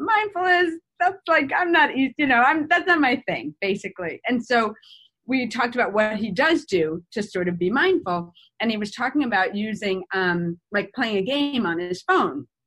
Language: English